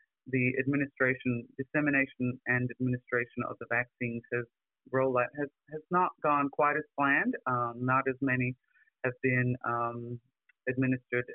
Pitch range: 125-140 Hz